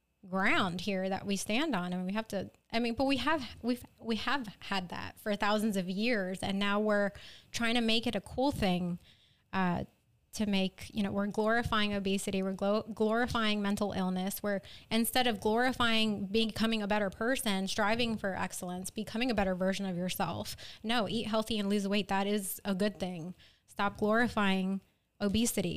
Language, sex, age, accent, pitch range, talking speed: English, female, 20-39, American, 200-245 Hz, 185 wpm